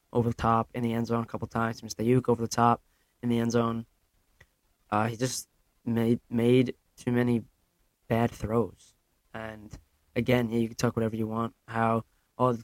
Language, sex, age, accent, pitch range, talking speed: English, male, 20-39, American, 110-120 Hz, 190 wpm